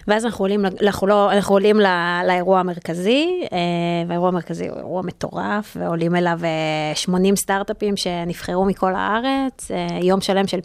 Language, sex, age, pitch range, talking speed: Hebrew, female, 20-39, 185-245 Hz, 130 wpm